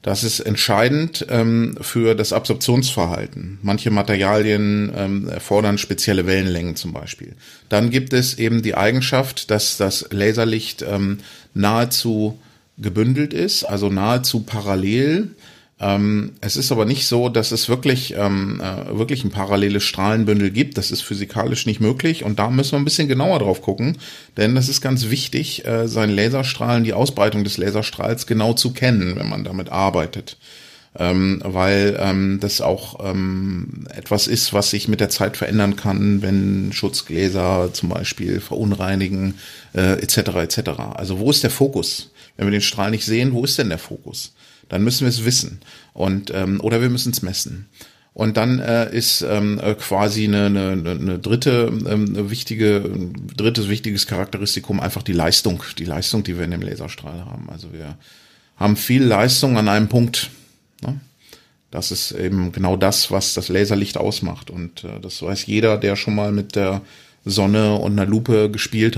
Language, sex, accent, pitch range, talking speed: German, male, German, 100-115 Hz, 155 wpm